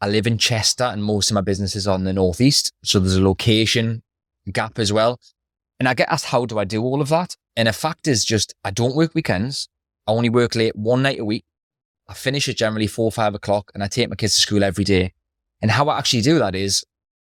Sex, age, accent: male, 20-39, British